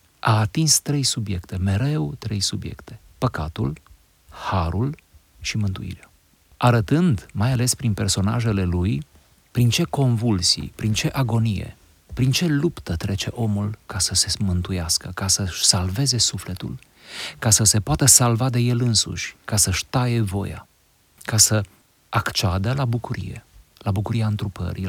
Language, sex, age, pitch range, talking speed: Romanian, male, 40-59, 85-115 Hz, 135 wpm